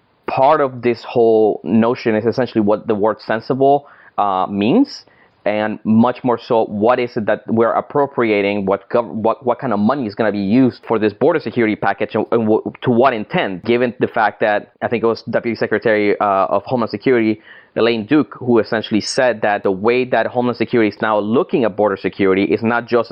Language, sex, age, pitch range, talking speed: English, male, 20-39, 105-125 Hz, 200 wpm